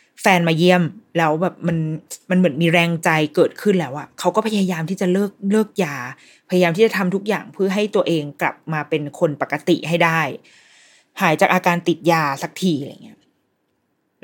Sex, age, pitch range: female, 20-39, 165-210 Hz